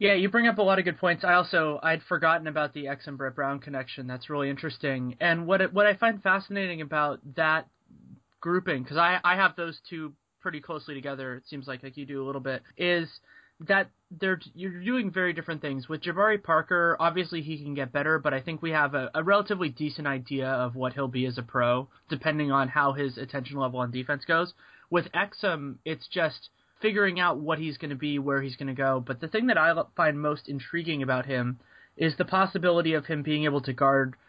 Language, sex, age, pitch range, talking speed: English, male, 20-39, 140-175 Hz, 220 wpm